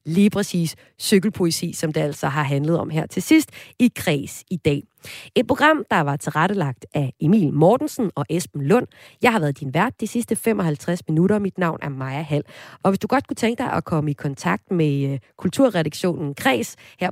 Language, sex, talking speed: Danish, female, 195 wpm